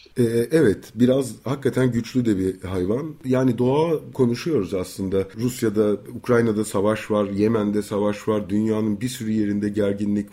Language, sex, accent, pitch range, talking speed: Turkish, male, native, 100-135 Hz, 140 wpm